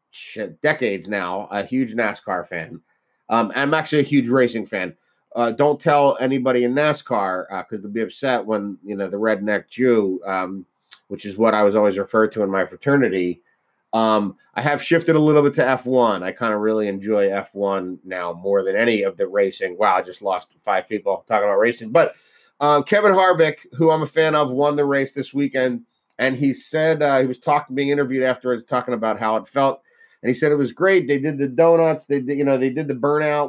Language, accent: English, American